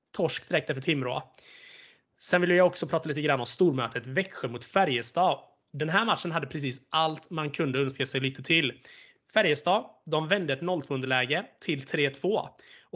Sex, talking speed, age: male, 160 wpm, 20-39